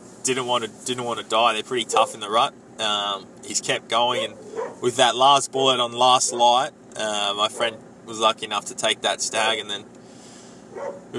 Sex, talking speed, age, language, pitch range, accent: male, 205 wpm, 20-39, English, 110-125 Hz, Australian